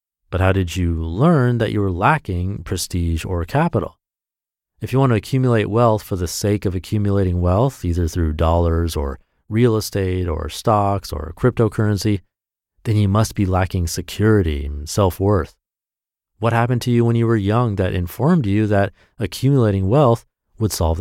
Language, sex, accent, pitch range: English, male, American, 85-115 Hz